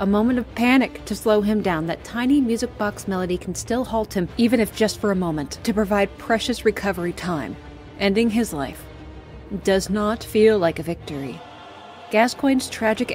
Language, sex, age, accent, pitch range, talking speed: English, female, 30-49, American, 165-215 Hz, 180 wpm